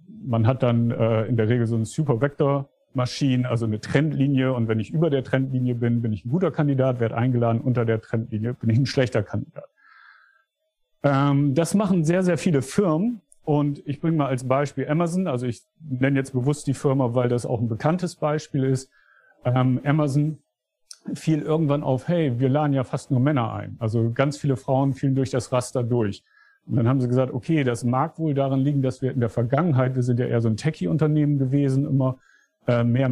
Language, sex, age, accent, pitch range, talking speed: German, male, 50-69, German, 120-150 Hz, 200 wpm